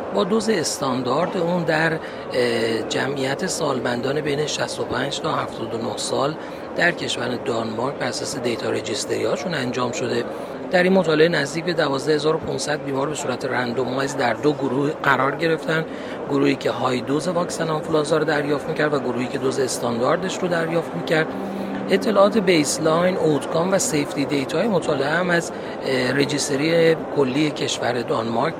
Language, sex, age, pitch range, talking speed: Persian, male, 40-59, 140-180 Hz, 140 wpm